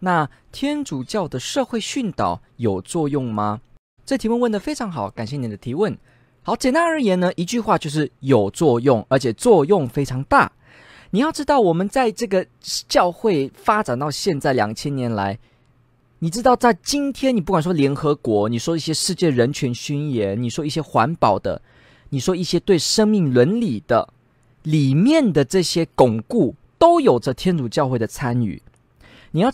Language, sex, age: Chinese, male, 20-39